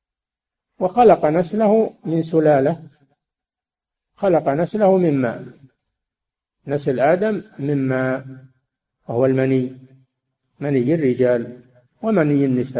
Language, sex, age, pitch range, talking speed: Arabic, male, 50-69, 130-165 Hz, 80 wpm